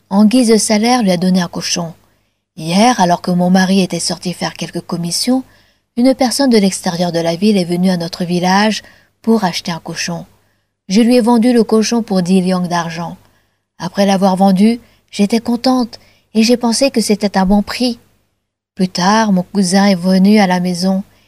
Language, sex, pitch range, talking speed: French, female, 175-220 Hz, 190 wpm